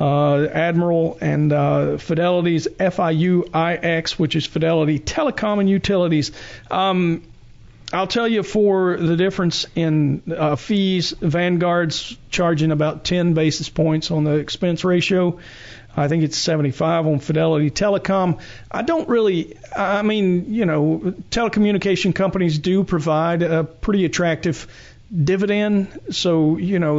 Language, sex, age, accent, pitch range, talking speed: English, male, 40-59, American, 155-185 Hz, 125 wpm